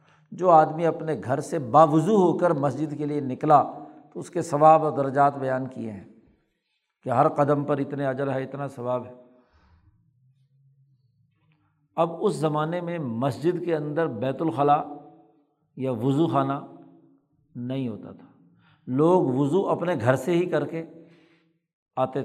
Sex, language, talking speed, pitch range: male, Urdu, 150 wpm, 140-165 Hz